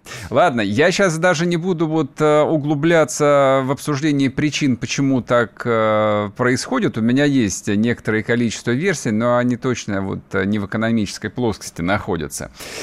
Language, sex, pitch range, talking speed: Russian, male, 110-155 Hz, 135 wpm